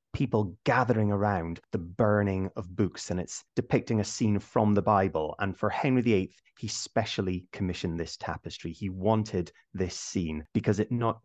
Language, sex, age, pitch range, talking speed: English, male, 30-49, 95-115 Hz, 165 wpm